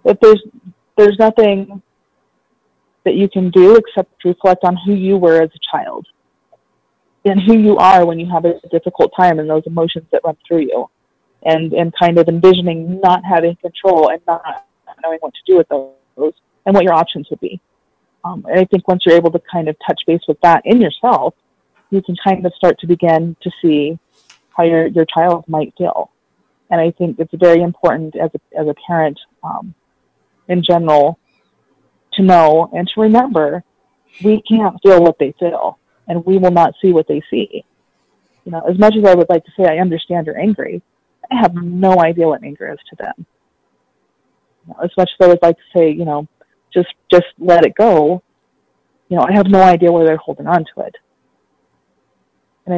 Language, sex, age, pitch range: English, female, 20-39, 165-190 Hz